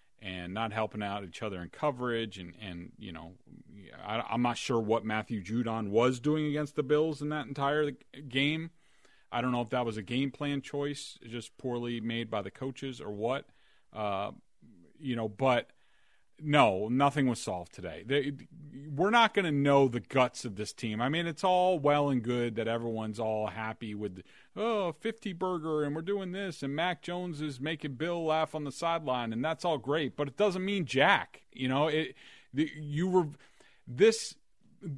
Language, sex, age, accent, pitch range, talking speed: English, male, 40-59, American, 120-150 Hz, 190 wpm